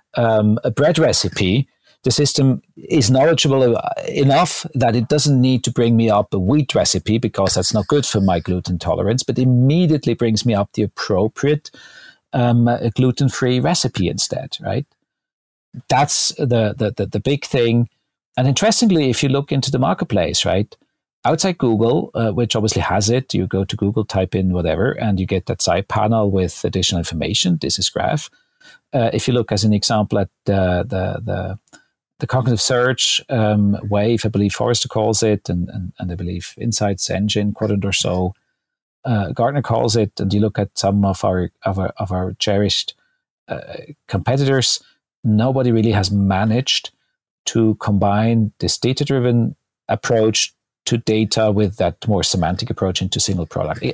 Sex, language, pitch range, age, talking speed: male, English, 100-125 Hz, 50-69, 170 wpm